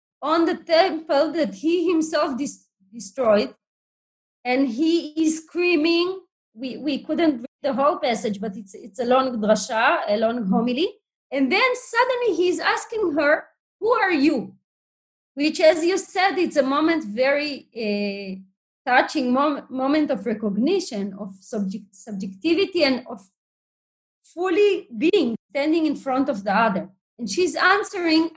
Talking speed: 140 wpm